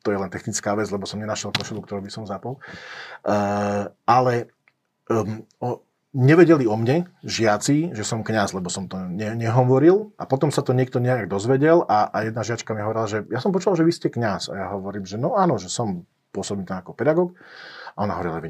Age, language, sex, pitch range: 40-59, Slovak, male, 110-130 Hz